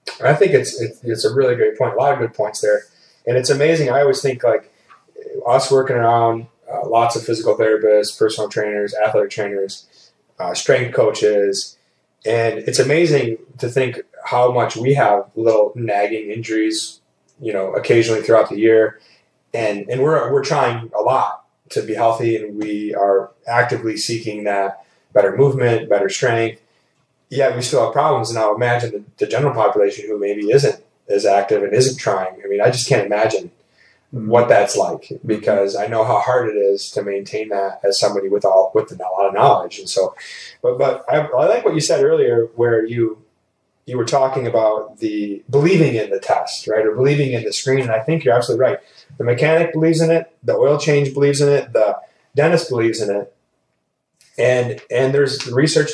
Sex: male